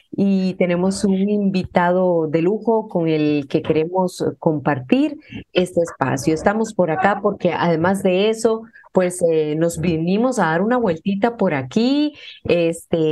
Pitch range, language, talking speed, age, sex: 160-195 Hz, Spanish, 140 wpm, 30-49, female